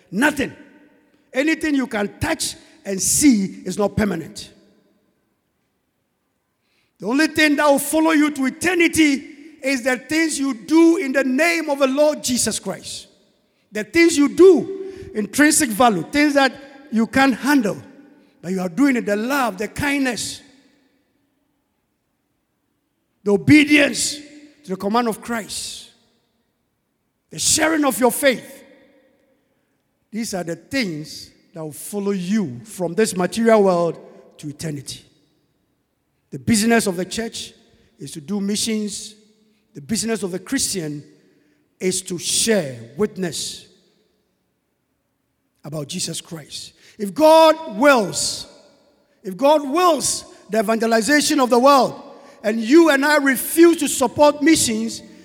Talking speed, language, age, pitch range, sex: 130 wpm, English, 50-69, 210-290 Hz, male